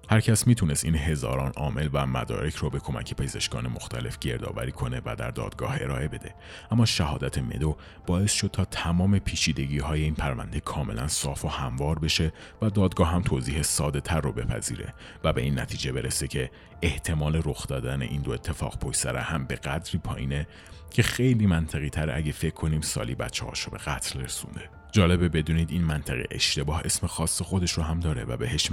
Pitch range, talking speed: 75-90 Hz, 180 wpm